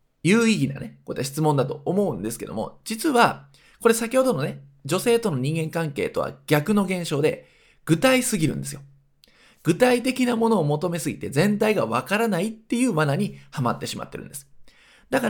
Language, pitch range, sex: Japanese, 140-235 Hz, male